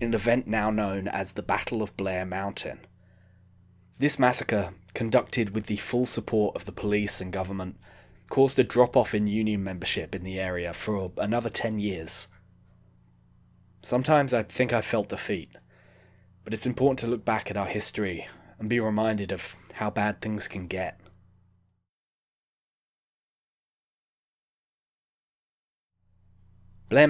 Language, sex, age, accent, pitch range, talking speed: English, male, 10-29, British, 95-115 Hz, 135 wpm